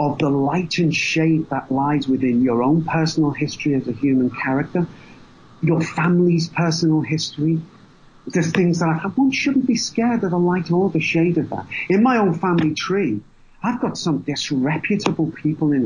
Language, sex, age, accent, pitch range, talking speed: English, male, 40-59, British, 150-200 Hz, 180 wpm